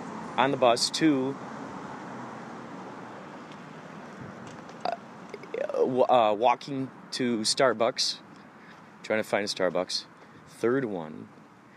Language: English